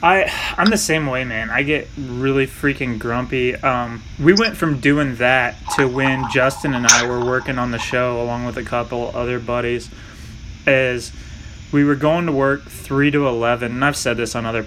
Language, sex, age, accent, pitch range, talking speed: English, male, 20-39, American, 115-135 Hz, 195 wpm